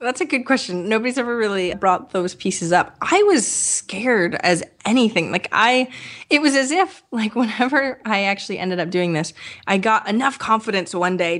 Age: 20-39